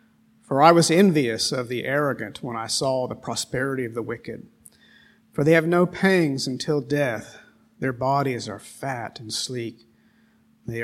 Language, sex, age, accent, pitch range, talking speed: English, male, 50-69, American, 120-195 Hz, 160 wpm